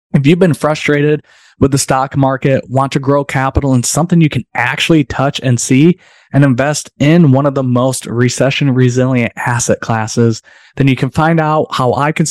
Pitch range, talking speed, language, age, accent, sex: 115-140 Hz, 190 wpm, English, 20-39, American, male